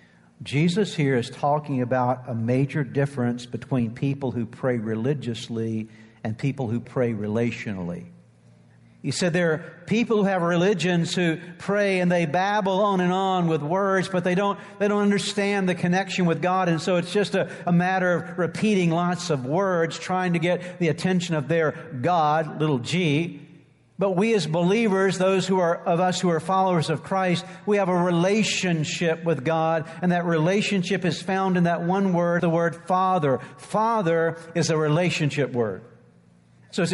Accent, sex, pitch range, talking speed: American, male, 150-185 Hz, 170 wpm